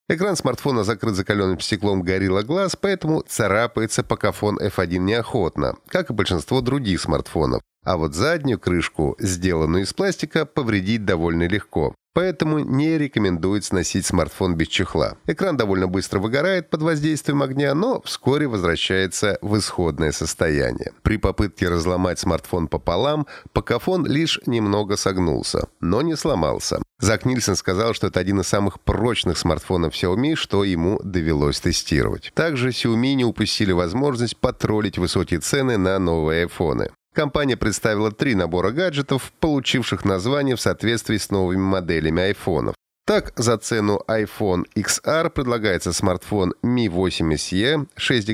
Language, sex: Russian, male